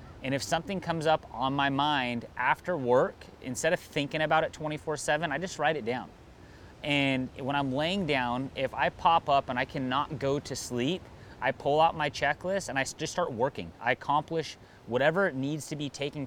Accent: American